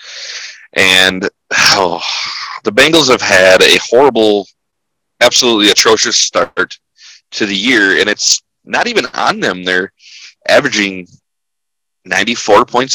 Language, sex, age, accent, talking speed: English, male, 30-49, American, 105 wpm